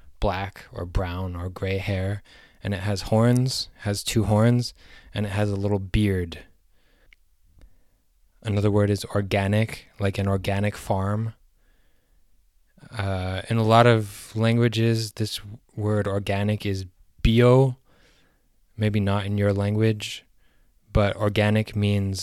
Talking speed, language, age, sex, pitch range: 125 wpm, English, 20-39, male, 95-110 Hz